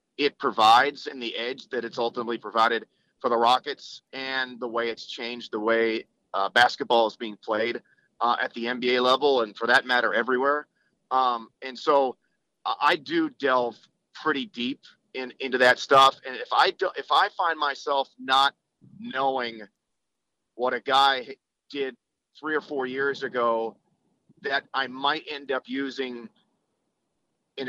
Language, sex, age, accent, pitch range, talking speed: English, male, 30-49, American, 120-140 Hz, 155 wpm